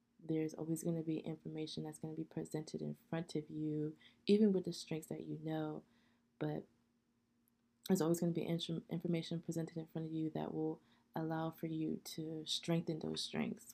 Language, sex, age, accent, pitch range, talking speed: English, female, 20-39, American, 150-170 Hz, 190 wpm